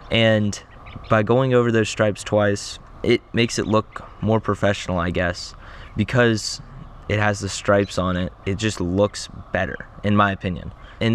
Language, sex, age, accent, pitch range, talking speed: English, male, 20-39, American, 100-120 Hz, 160 wpm